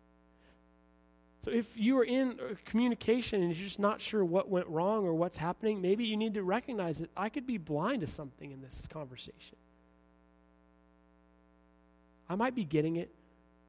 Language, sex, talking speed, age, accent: English, male, 160 wpm, 30-49, American